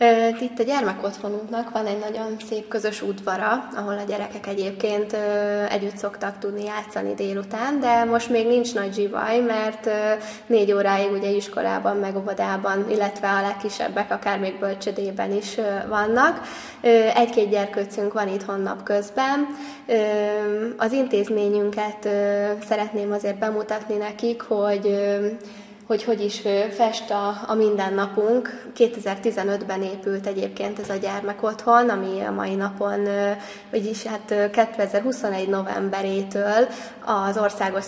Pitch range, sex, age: 200-225 Hz, female, 10-29